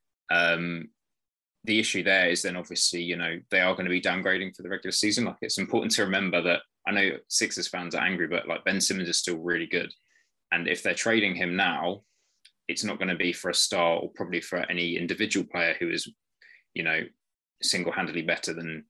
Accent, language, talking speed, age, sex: British, English, 210 wpm, 20-39, male